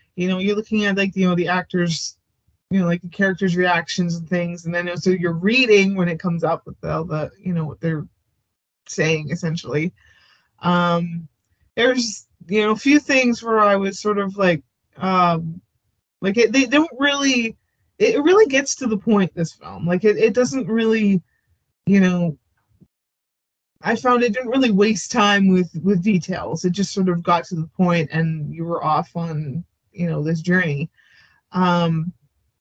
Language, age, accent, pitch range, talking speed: English, 20-39, American, 165-200 Hz, 190 wpm